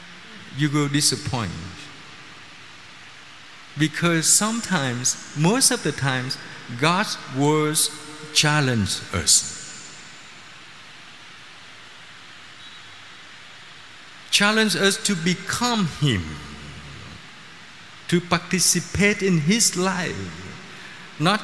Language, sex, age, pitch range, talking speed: Vietnamese, male, 50-69, 140-190 Hz, 65 wpm